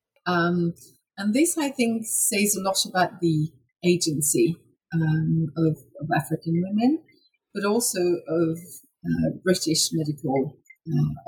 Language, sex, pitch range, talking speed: English, female, 170-245 Hz, 120 wpm